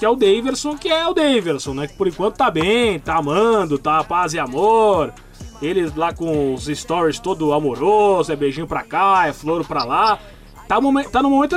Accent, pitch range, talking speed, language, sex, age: Brazilian, 160-250 Hz, 205 wpm, Portuguese, male, 20-39